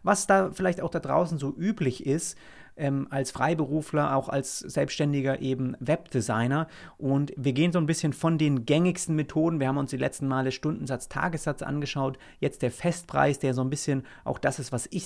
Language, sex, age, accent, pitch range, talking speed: German, male, 30-49, German, 130-160 Hz, 190 wpm